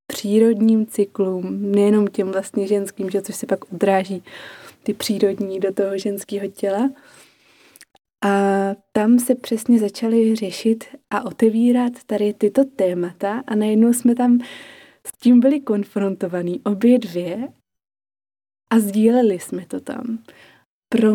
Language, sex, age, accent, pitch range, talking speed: Czech, female, 20-39, native, 200-240 Hz, 120 wpm